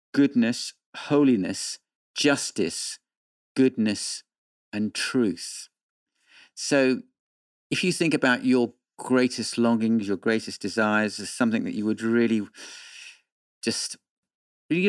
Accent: British